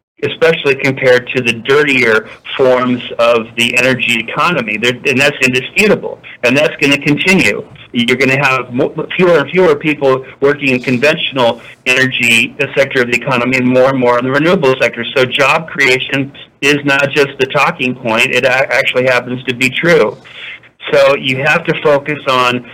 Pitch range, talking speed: 125-145 Hz, 165 wpm